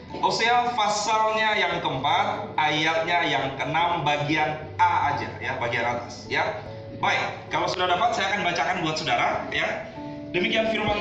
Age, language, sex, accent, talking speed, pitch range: 30-49, Indonesian, male, native, 140 wpm, 165-225 Hz